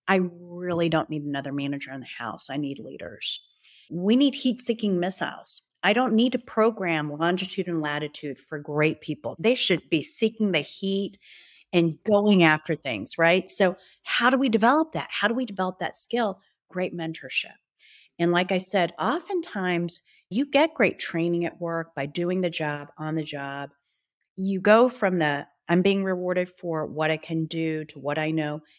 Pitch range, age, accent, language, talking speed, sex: 160-215 Hz, 40-59, American, English, 180 wpm, female